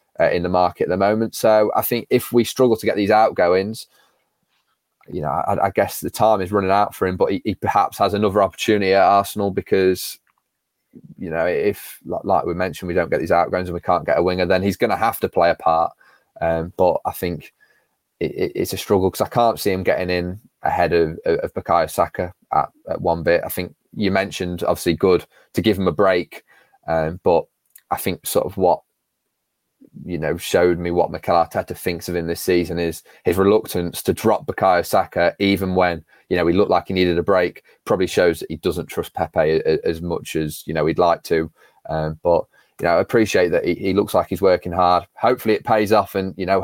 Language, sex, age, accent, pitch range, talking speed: English, male, 20-39, British, 85-100 Hz, 225 wpm